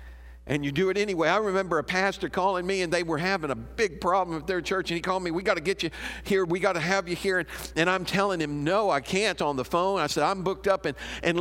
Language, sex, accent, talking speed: English, male, American, 290 wpm